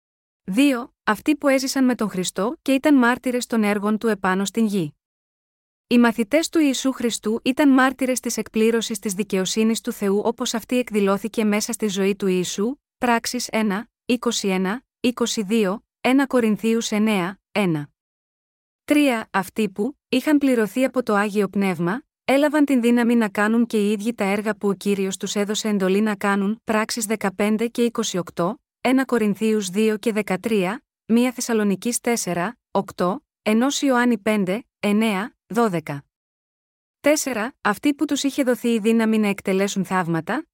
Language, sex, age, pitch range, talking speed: Greek, female, 20-39, 200-240 Hz, 150 wpm